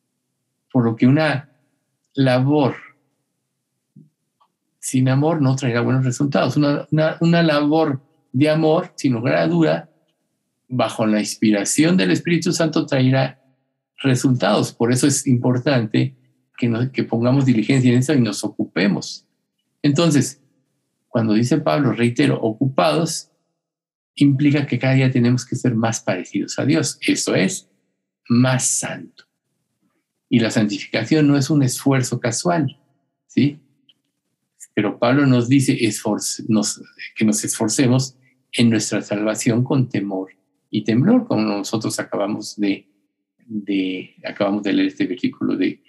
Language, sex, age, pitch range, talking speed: Spanish, male, 50-69, 120-155 Hz, 130 wpm